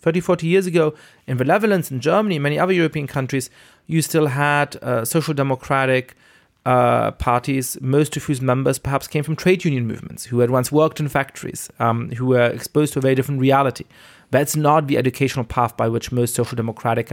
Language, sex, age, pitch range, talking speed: Dutch, male, 30-49, 115-155 Hz, 200 wpm